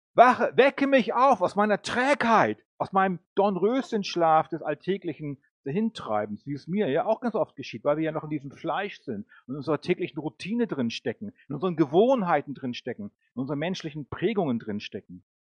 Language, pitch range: German, 145-220 Hz